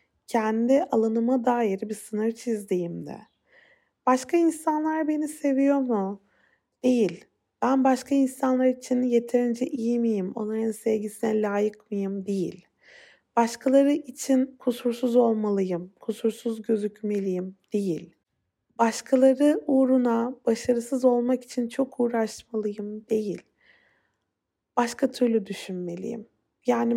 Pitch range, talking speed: 225-280 Hz, 95 wpm